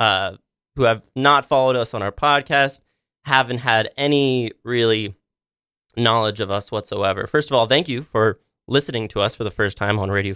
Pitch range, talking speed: 110-150 Hz, 185 wpm